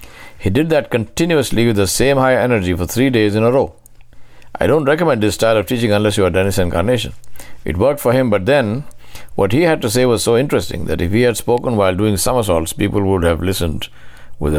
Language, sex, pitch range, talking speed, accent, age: English, male, 85-115 Hz, 220 wpm, Indian, 60-79